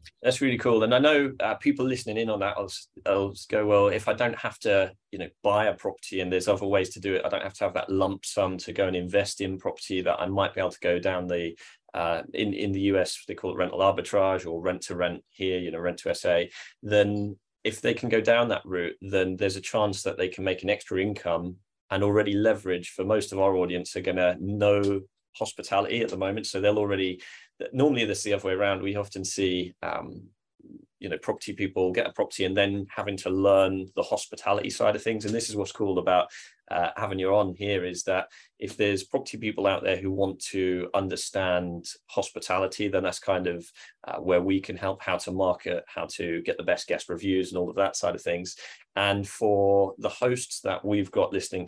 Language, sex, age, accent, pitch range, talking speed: English, male, 20-39, British, 95-105 Hz, 230 wpm